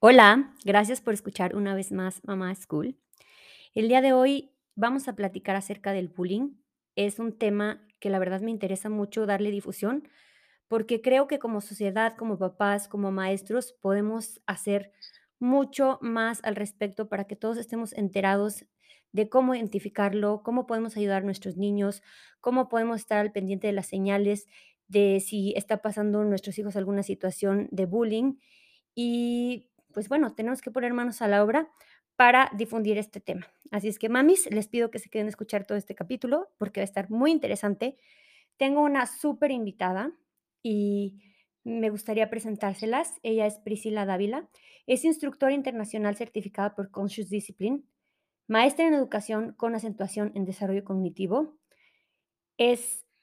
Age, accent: 20-39, Mexican